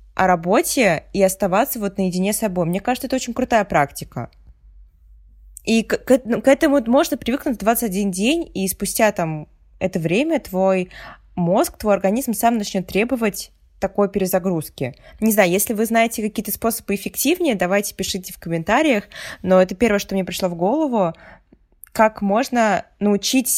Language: Russian